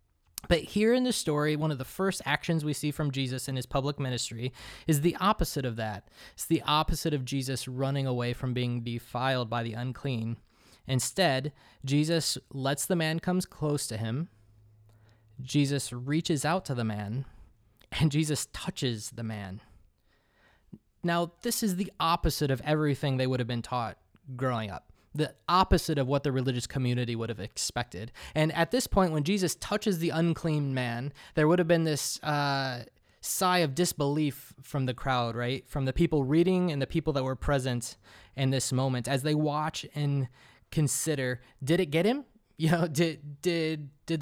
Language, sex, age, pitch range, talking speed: English, male, 20-39, 125-155 Hz, 175 wpm